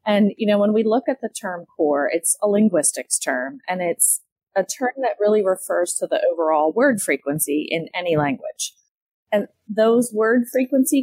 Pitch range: 170-225 Hz